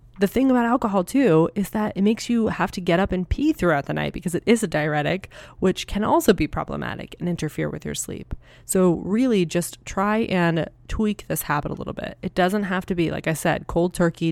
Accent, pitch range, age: American, 160-195 Hz, 20-39